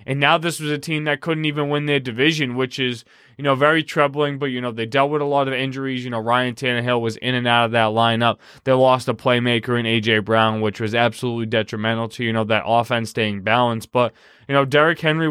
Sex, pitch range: male, 120-150 Hz